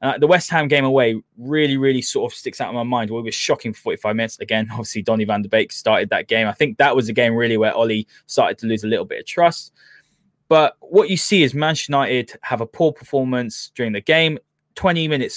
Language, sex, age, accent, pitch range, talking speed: English, male, 20-39, British, 115-150 Hz, 240 wpm